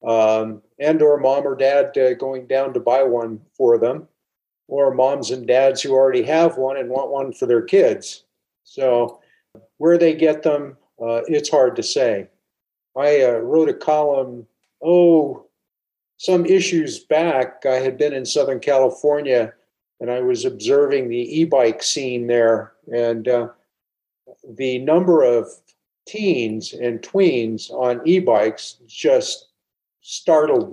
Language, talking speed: English, 145 wpm